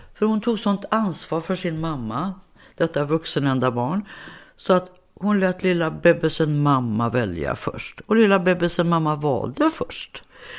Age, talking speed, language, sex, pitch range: 60-79, 145 wpm, English, female, 140-185 Hz